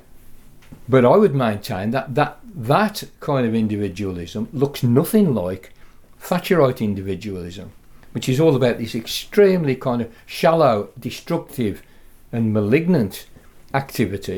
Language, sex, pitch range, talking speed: English, male, 115-140 Hz, 115 wpm